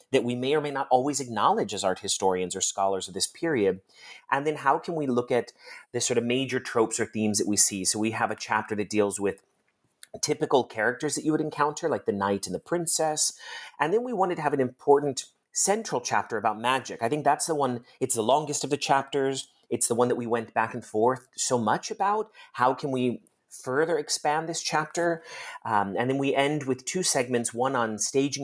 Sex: male